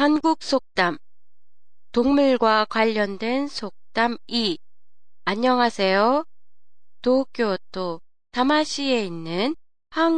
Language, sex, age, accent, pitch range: Japanese, female, 20-39, Korean, 190-265 Hz